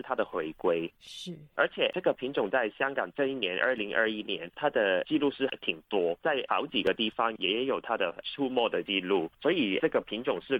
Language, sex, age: Chinese, male, 30-49